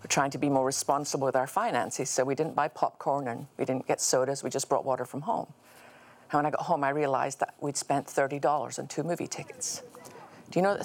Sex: female